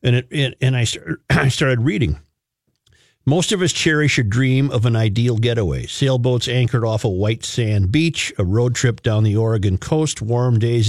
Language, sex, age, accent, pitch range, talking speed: English, male, 50-69, American, 115-155 Hz, 180 wpm